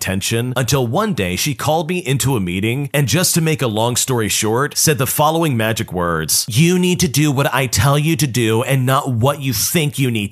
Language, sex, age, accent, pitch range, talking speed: English, male, 40-59, American, 115-160 Hz, 235 wpm